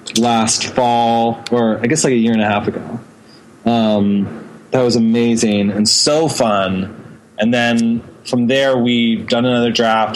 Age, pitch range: 20-39, 105-115 Hz